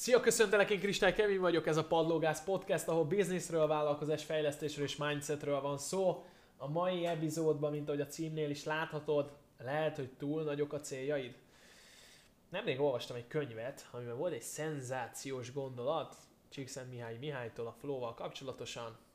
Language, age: Hungarian, 20-39